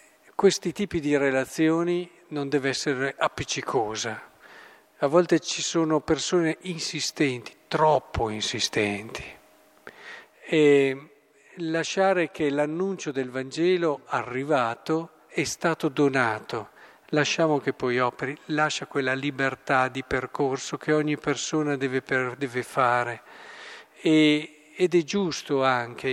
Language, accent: Italian, native